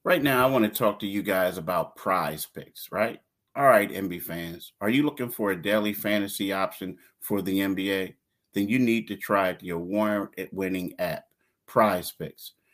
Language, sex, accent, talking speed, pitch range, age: English, male, American, 190 wpm, 95-115 Hz, 30-49